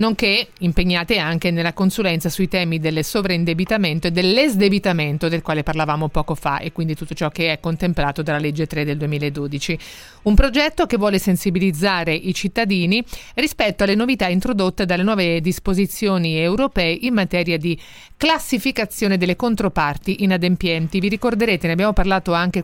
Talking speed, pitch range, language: 150 wpm, 170-200 Hz, Italian